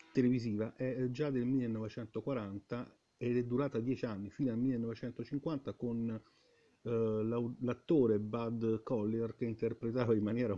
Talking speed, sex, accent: 130 wpm, male, native